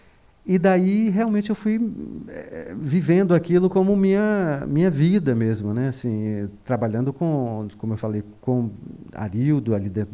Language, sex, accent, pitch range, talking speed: Portuguese, male, Brazilian, 115-150 Hz, 140 wpm